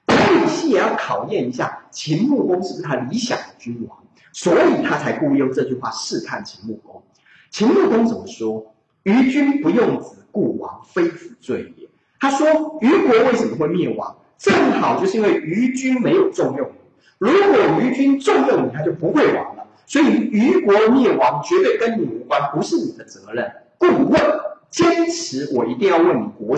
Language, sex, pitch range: Chinese, male, 230-335 Hz